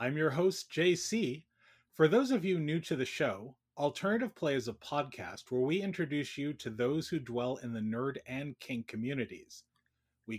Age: 30-49